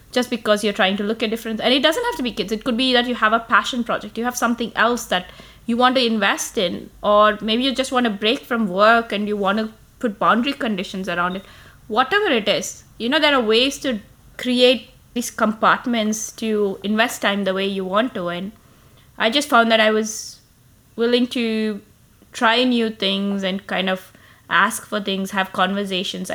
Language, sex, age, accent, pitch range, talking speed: English, female, 20-39, Indian, 190-235 Hz, 210 wpm